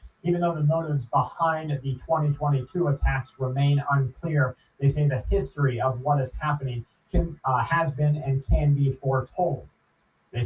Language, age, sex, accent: English, 30-49, male, American